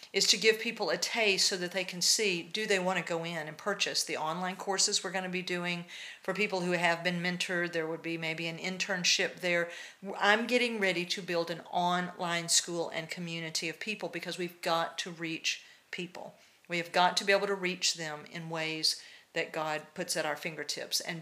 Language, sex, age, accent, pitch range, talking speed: English, female, 50-69, American, 170-200 Hz, 210 wpm